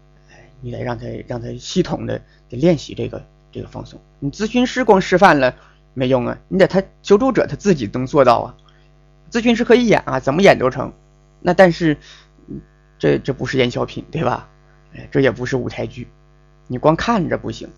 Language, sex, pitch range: Chinese, male, 130-160 Hz